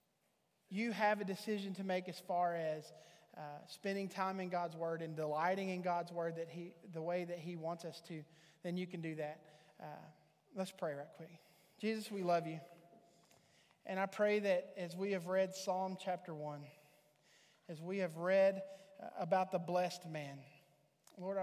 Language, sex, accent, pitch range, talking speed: English, male, American, 165-195 Hz, 175 wpm